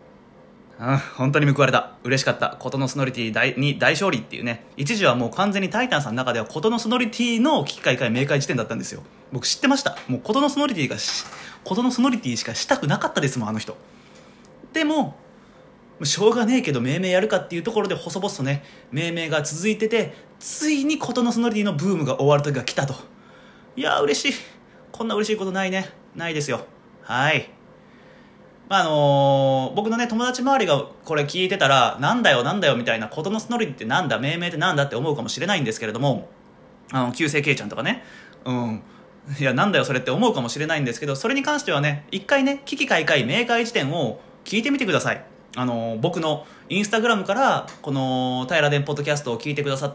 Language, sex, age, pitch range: Japanese, male, 20-39, 135-230 Hz